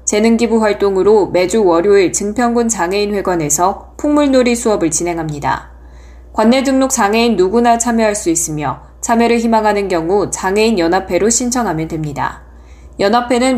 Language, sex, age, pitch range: Korean, female, 20-39, 170-245 Hz